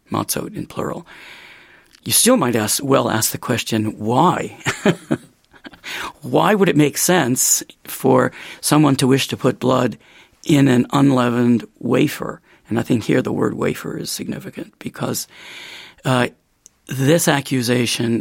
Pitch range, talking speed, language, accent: 115-145 Hz, 135 wpm, Czech, American